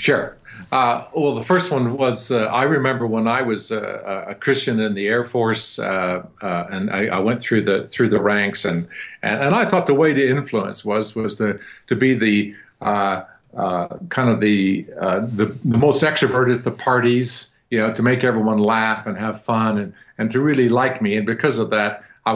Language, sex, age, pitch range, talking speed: English, male, 50-69, 110-140 Hz, 210 wpm